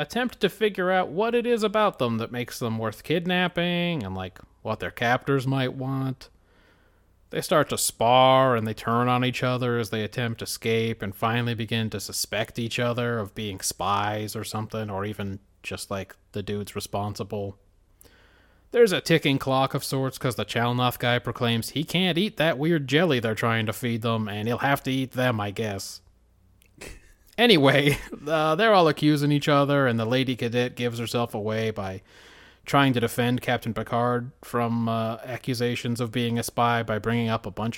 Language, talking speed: English, 185 wpm